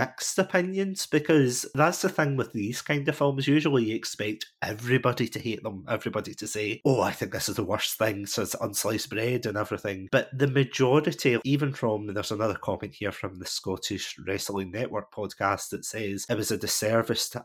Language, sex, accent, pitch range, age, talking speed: English, male, British, 100-125 Hz, 30-49, 195 wpm